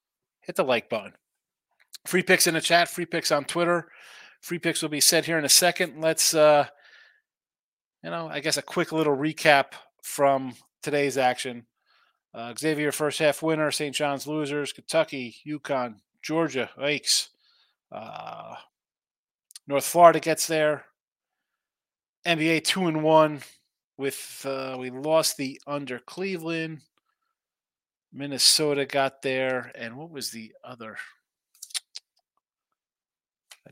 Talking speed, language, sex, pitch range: 130 wpm, English, male, 130-165 Hz